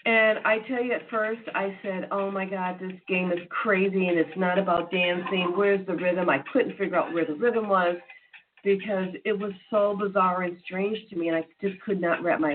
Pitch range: 170-220 Hz